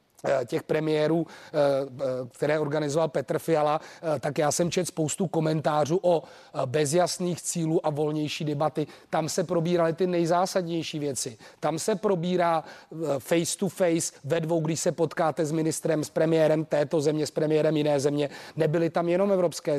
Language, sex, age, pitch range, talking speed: Czech, male, 30-49, 155-185 Hz, 150 wpm